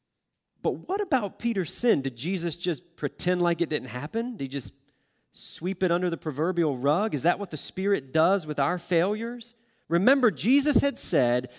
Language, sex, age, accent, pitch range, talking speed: English, male, 30-49, American, 145-200 Hz, 180 wpm